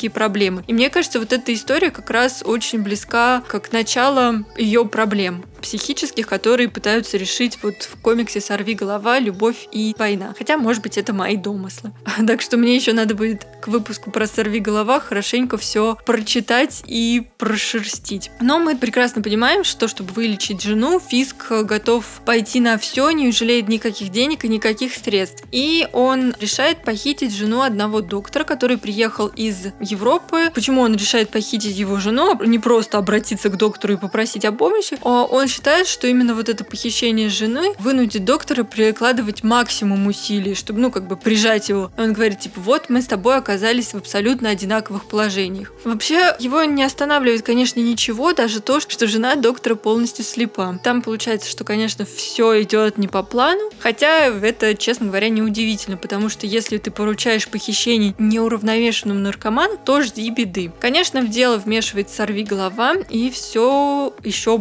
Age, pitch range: 20-39, 215-245 Hz